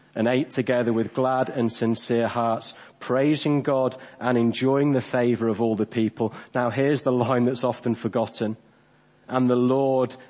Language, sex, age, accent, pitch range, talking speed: English, male, 30-49, British, 125-170 Hz, 165 wpm